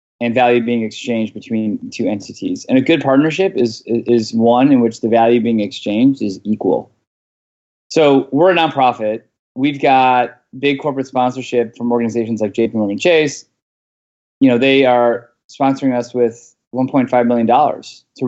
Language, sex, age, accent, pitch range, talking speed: English, male, 20-39, American, 115-130 Hz, 150 wpm